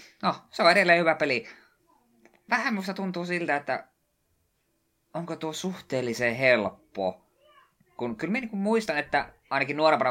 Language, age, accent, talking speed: Finnish, 20-39, native, 135 wpm